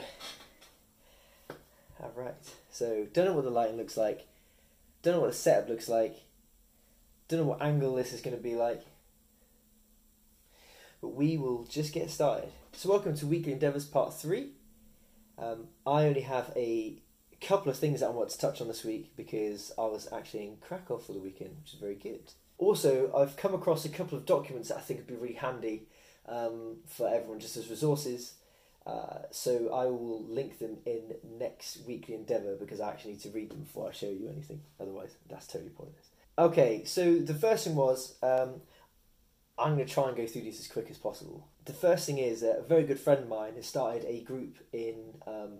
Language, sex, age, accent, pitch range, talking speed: English, male, 20-39, British, 115-155 Hz, 195 wpm